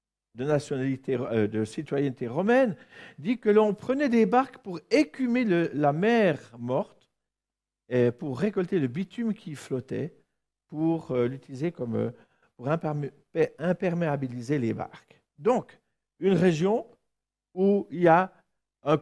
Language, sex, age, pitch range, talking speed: French, male, 50-69, 125-185 Hz, 125 wpm